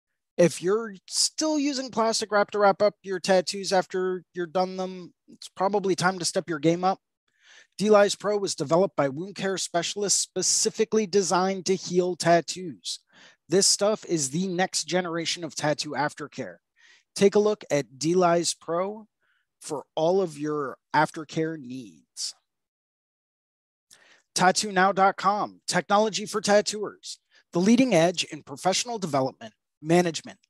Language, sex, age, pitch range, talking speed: English, male, 20-39, 160-200 Hz, 135 wpm